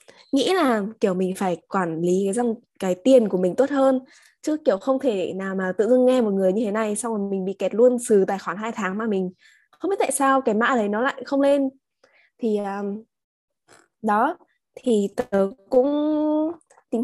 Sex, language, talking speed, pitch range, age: female, Vietnamese, 210 wpm, 190-260 Hz, 20-39